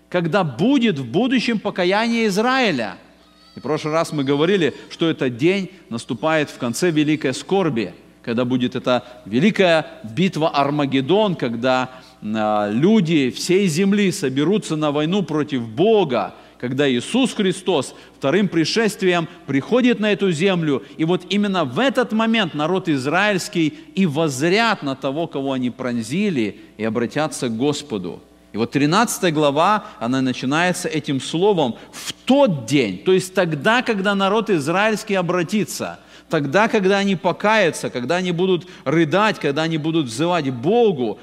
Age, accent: 50-69, native